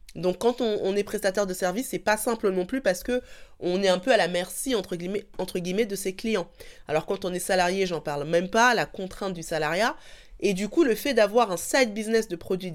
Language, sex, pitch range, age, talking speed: French, female, 175-225 Hz, 20-39, 240 wpm